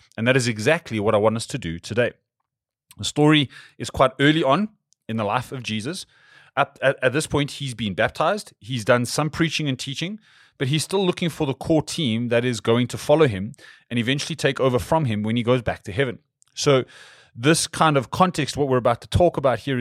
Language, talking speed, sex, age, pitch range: English, 225 wpm, male, 30-49, 115-150 Hz